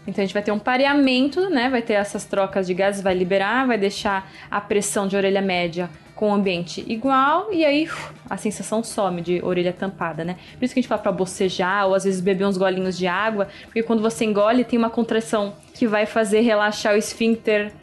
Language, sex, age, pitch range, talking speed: Portuguese, female, 10-29, 200-235 Hz, 220 wpm